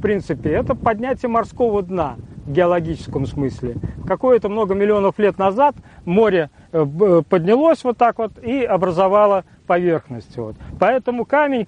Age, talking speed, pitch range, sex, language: 40-59, 125 wpm, 170-240 Hz, male, Russian